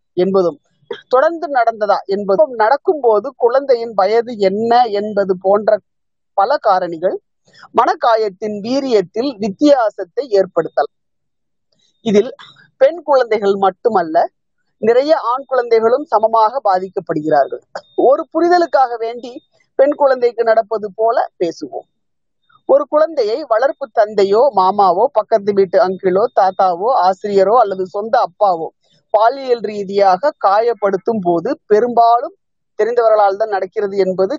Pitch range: 195-265 Hz